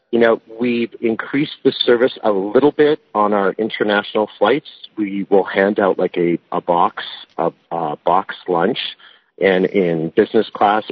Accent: American